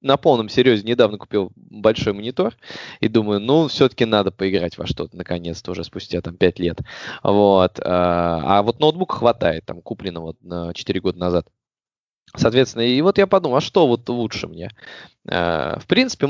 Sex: male